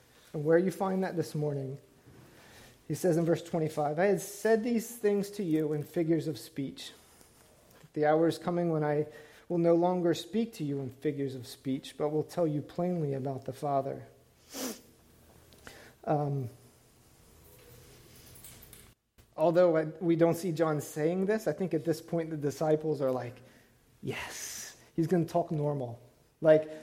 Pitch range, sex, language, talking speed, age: 140-185 Hz, male, English, 160 wpm, 30-49